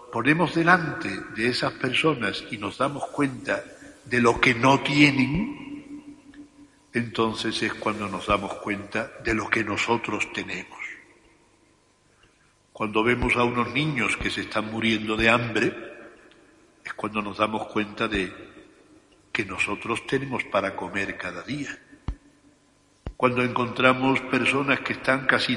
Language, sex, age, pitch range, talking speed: Spanish, male, 60-79, 110-135 Hz, 130 wpm